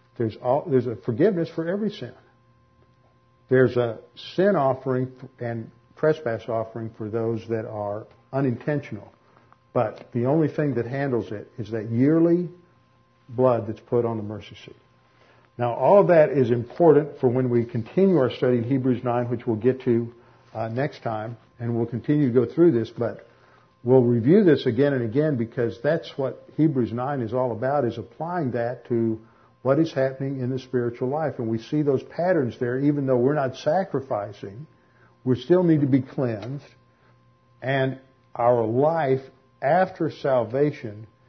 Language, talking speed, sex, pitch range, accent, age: English, 165 wpm, male, 115-140 Hz, American, 60-79